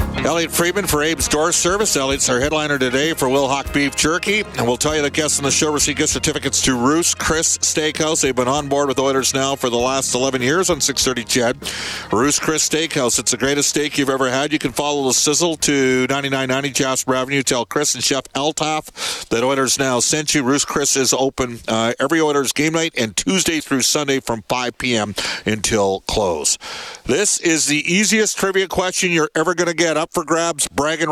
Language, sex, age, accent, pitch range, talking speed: English, male, 50-69, American, 135-165 Hz, 205 wpm